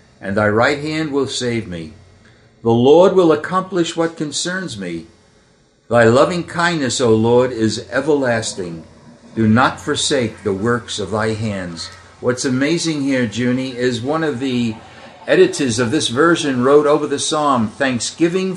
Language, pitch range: English, 110-145 Hz